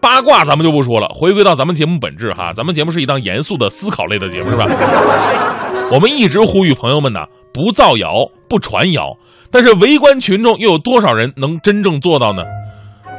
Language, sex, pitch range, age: Chinese, male, 125-200 Hz, 30-49